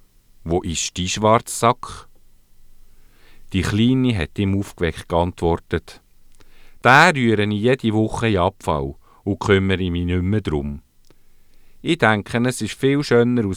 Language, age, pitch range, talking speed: English, 50-69, 80-115 Hz, 135 wpm